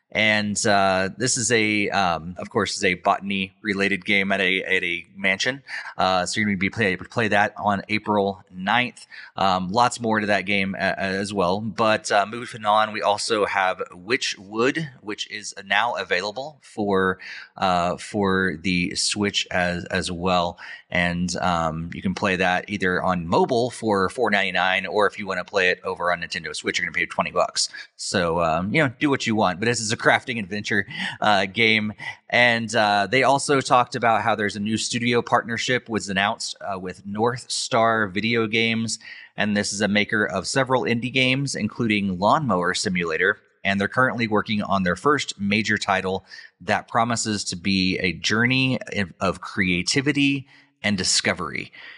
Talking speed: 175 wpm